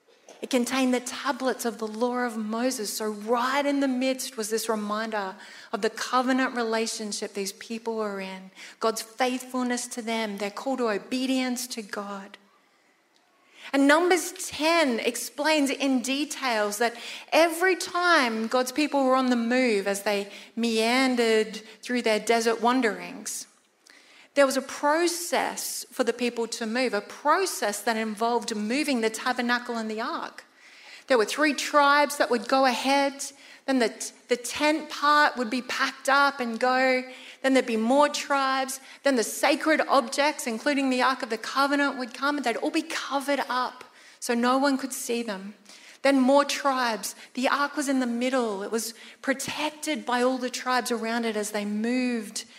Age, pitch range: 30-49, 225-275 Hz